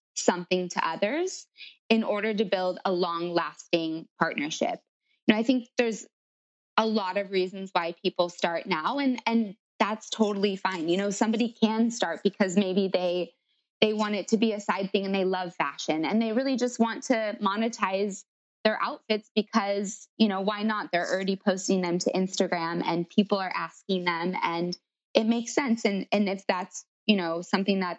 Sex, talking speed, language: female, 185 wpm, English